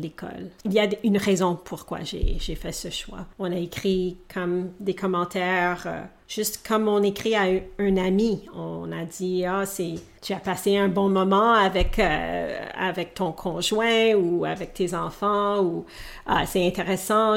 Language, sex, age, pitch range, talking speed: French, female, 40-59, 175-200 Hz, 180 wpm